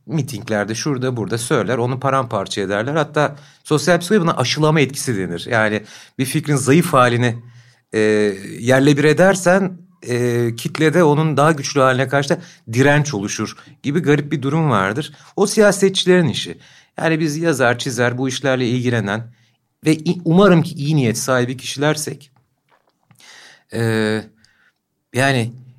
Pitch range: 120-170 Hz